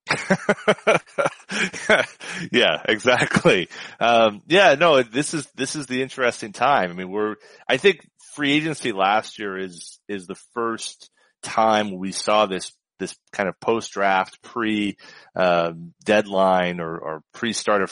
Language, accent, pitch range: English, American, 95-115 Hz